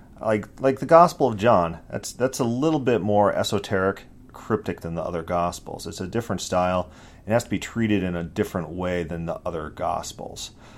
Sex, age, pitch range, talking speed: male, 40-59, 90-110 Hz, 195 wpm